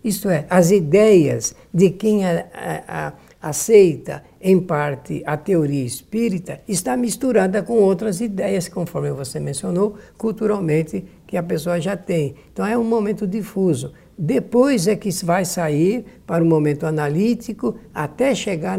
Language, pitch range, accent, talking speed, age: Portuguese, 145-200 Hz, Brazilian, 135 wpm, 60-79